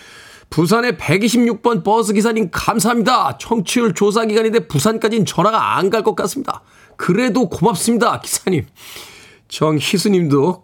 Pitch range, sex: 150-220 Hz, male